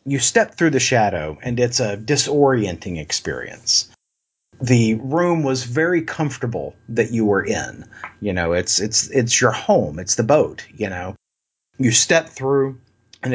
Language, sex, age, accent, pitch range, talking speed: English, male, 40-59, American, 110-130 Hz, 155 wpm